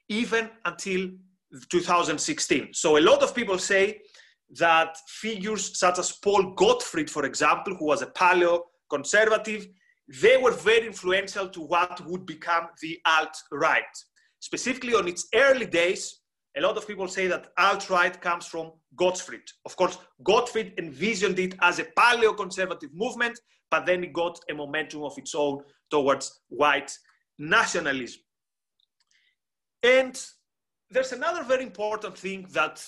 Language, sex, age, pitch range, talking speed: English, male, 30-49, 175-250 Hz, 135 wpm